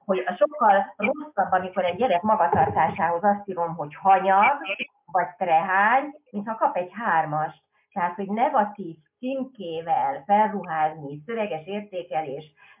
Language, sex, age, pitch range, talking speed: Hungarian, female, 30-49, 175-225 Hz, 115 wpm